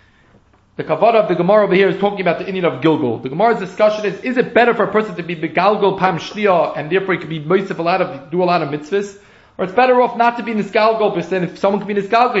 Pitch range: 180-230 Hz